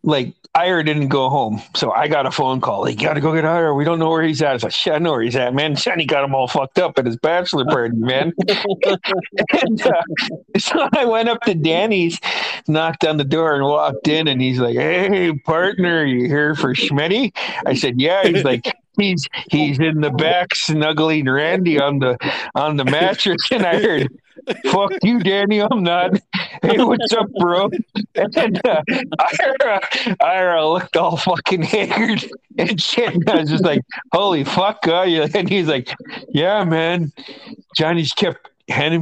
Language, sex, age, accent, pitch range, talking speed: English, male, 50-69, American, 155-200 Hz, 190 wpm